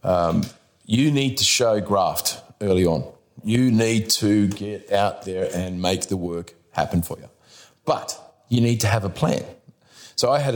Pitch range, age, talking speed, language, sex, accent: 90-115 Hz, 40-59, 175 wpm, English, male, Australian